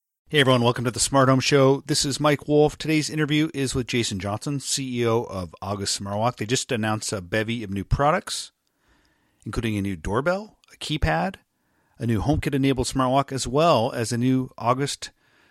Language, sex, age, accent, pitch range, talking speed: English, male, 40-59, American, 105-135 Hz, 180 wpm